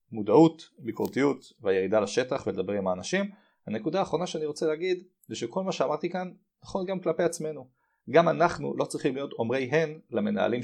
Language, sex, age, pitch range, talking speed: Hebrew, male, 30-49, 125-185 Hz, 165 wpm